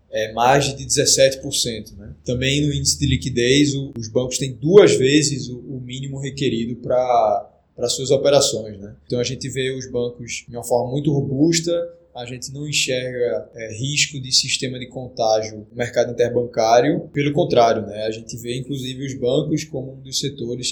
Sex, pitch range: male, 115-140 Hz